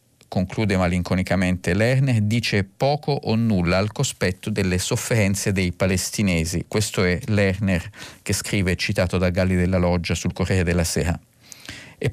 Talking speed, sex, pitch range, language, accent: 140 wpm, male, 95-130 Hz, Italian, native